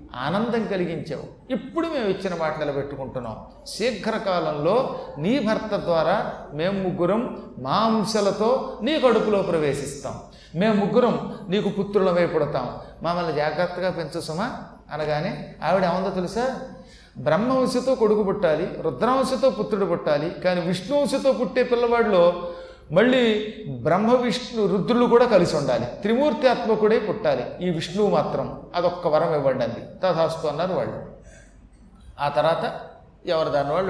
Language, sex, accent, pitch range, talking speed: Telugu, male, native, 160-225 Hz, 115 wpm